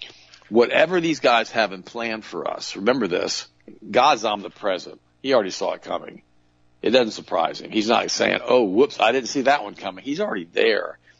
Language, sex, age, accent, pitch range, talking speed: English, male, 50-69, American, 95-120 Hz, 190 wpm